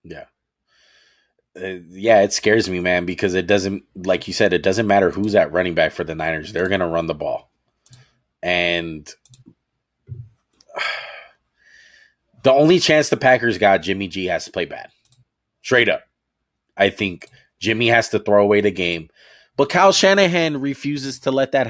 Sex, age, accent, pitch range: male, 20-39, American, 90-115 Hz